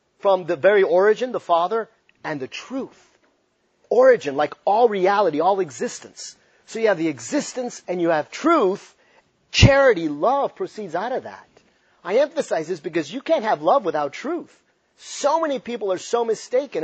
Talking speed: 165 wpm